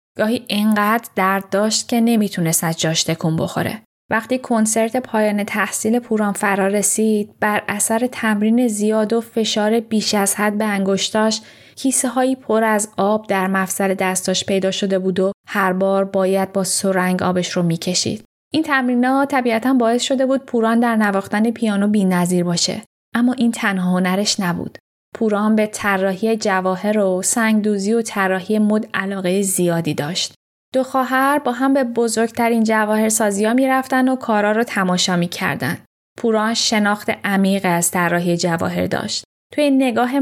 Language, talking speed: Persian, 155 wpm